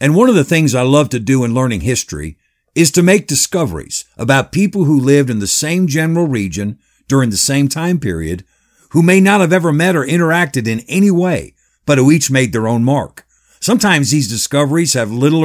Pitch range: 120-160 Hz